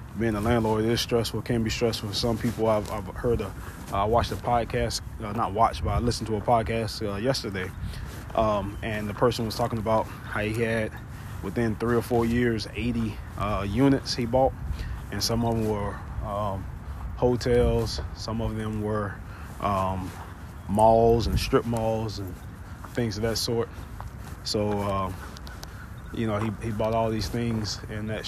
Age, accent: 20-39, American